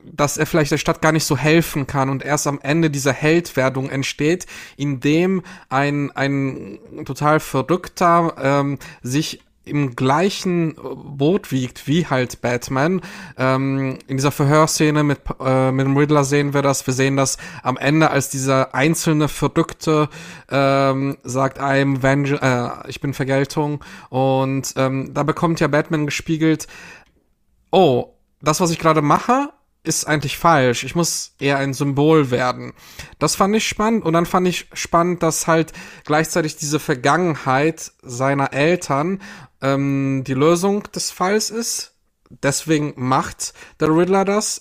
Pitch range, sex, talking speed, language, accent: 135-175 Hz, male, 145 wpm, German, German